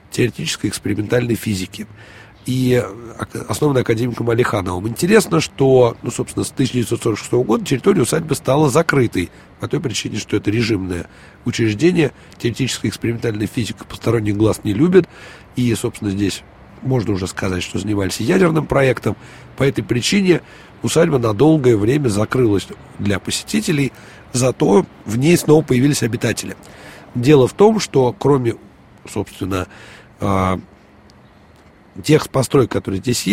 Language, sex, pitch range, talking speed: Russian, male, 105-135 Hz, 120 wpm